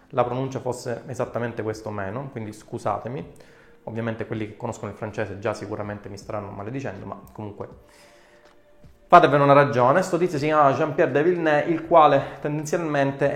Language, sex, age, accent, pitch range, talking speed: Italian, male, 30-49, native, 120-160 Hz, 155 wpm